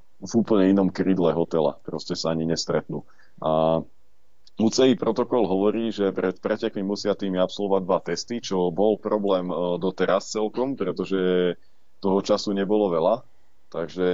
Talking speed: 135 wpm